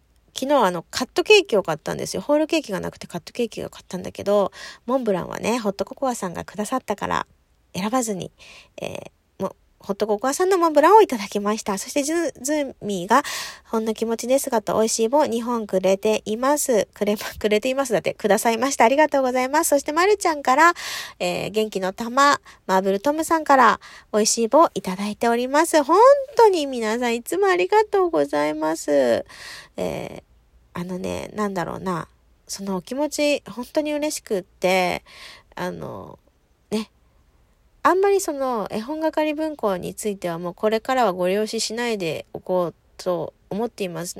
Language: Japanese